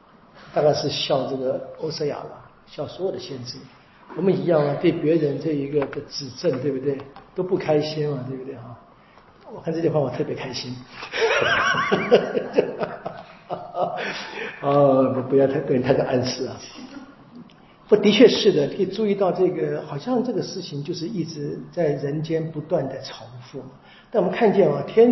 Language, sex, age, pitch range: Chinese, male, 50-69, 140-195 Hz